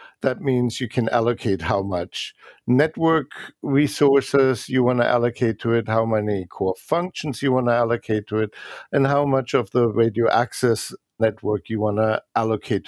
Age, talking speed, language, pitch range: 50-69, 170 wpm, English, 115-145 Hz